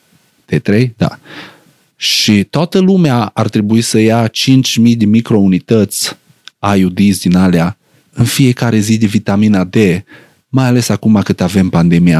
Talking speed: 135 wpm